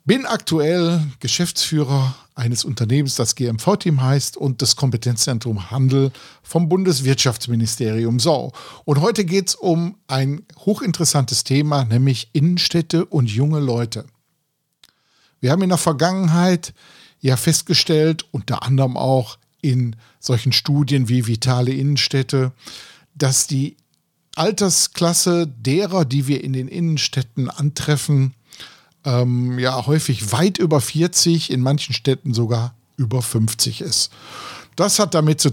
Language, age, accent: German, 50-69, German